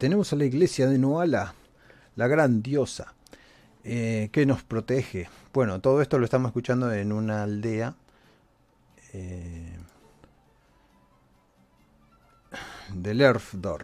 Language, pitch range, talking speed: Spanish, 95-125 Hz, 110 wpm